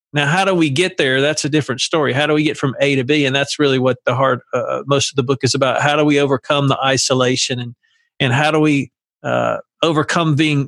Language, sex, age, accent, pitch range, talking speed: English, male, 50-69, American, 140-180 Hz, 255 wpm